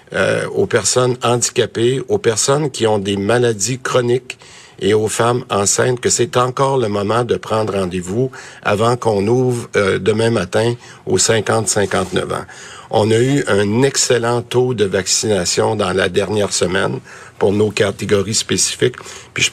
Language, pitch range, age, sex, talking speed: French, 105-125 Hz, 50-69, male, 155 wpm